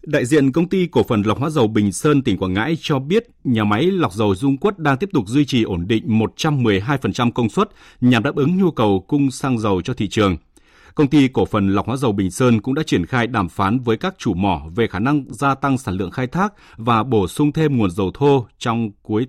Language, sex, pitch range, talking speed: Vietnamese, male, 105-145 Hz, 250 wpm